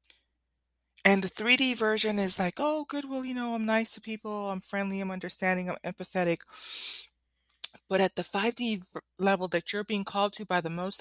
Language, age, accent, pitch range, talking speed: English, 20-39, American, 175-225 Hz, 180 wpm